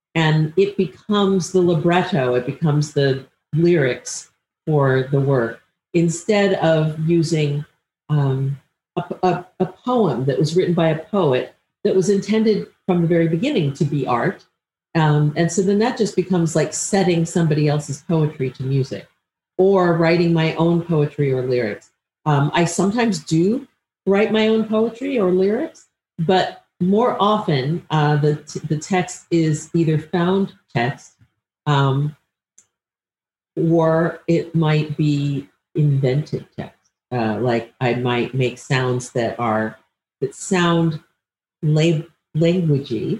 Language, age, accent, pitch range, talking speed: English, 50-69, American, 135-185 Hz, 130 wpm